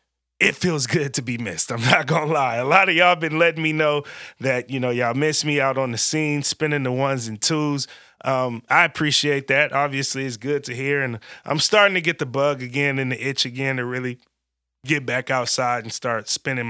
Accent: American